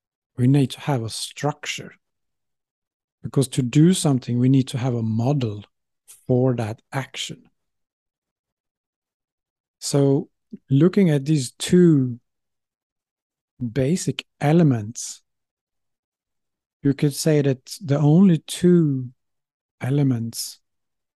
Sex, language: male, English